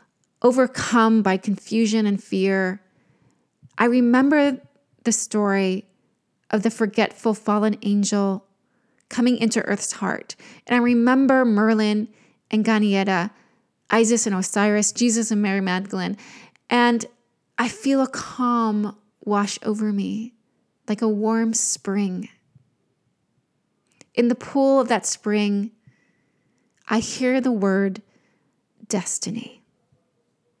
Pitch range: 195-230 Hz